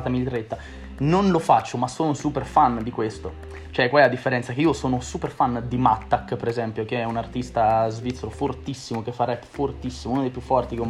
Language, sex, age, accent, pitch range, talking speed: Italian, male, 20-39, native, 115-140 Hz, 215 wpm